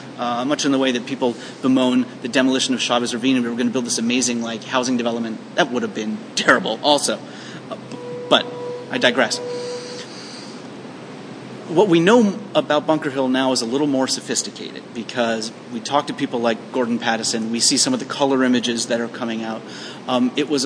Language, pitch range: English, 120-140 Hz